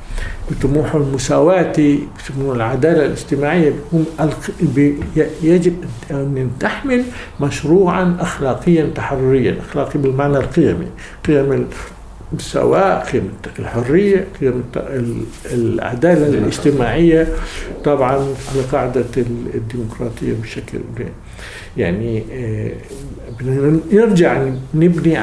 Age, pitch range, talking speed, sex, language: 60-79, 125-175 Hz, 70 wpm, male, English